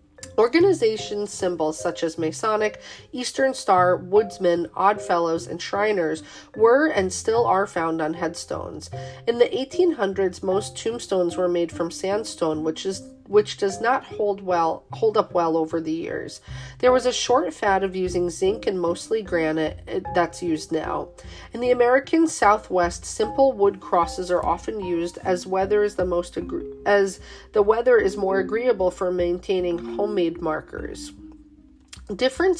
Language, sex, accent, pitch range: English, female, American, 170-230 Hz